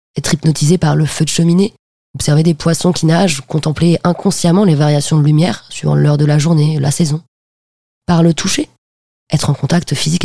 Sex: female